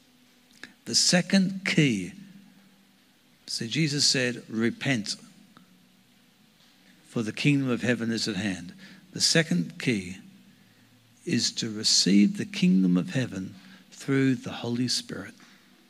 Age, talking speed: 60-79, 115 wpm